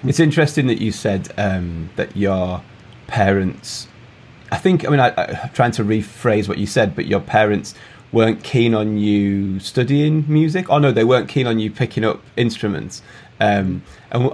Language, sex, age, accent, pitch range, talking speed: English, male, 30-49, British, 105-135 Hz, 180 wpm